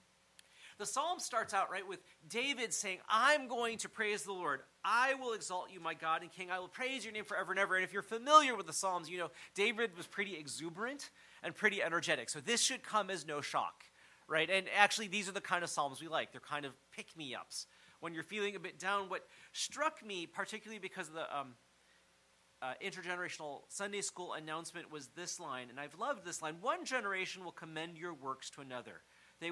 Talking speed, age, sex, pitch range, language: 210 wpm, 40-59, male, 155-205 Hz, English